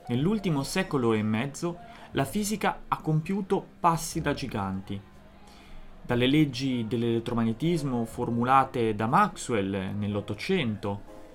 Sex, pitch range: male, 115-165 Hz